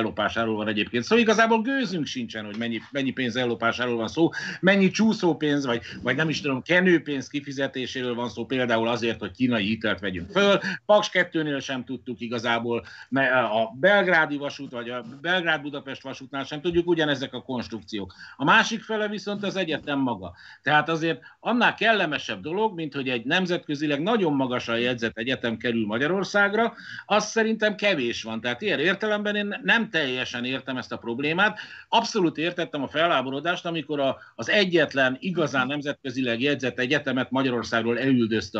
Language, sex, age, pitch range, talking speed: Hungarian, male, 60-79, 120-185 Hz, 165 wpm